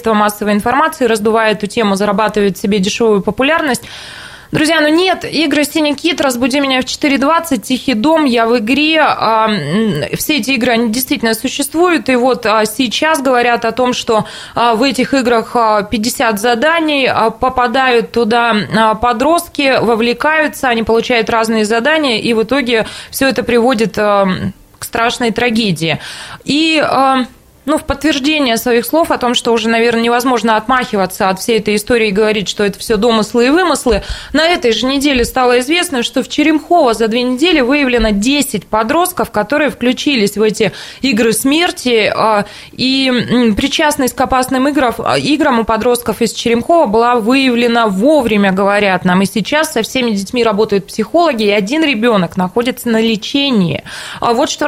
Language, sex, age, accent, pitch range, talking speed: Russian, female, 20-39, native, 220-275 Hz, 145 wpm